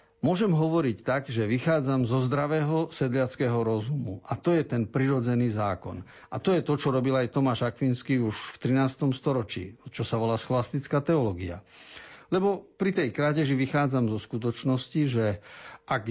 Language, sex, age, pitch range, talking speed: Slovak, male, 50-69, 115-155 Hz, 155 wpm